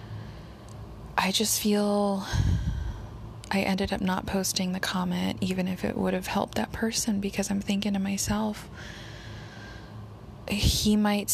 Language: English